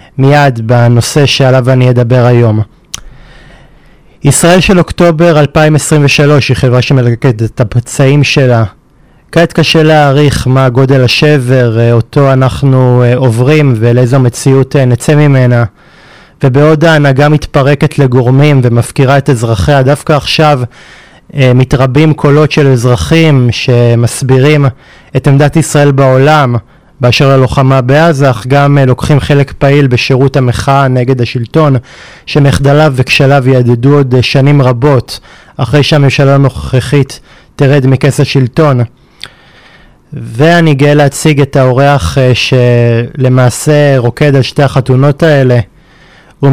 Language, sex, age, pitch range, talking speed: Hebrew, male, 20-39, 125-145 Hz, 105 wpm